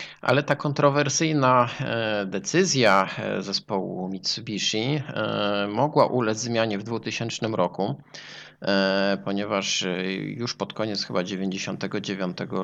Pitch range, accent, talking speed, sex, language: 90-110 Hz, native, 85 wpm, male, Polish